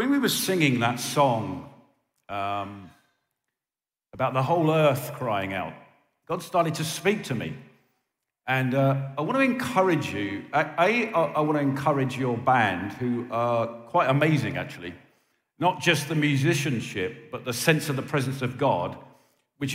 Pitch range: 130-170 Hz